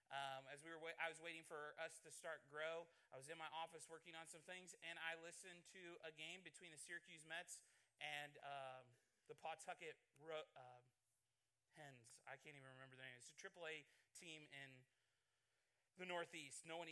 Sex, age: male, 30-49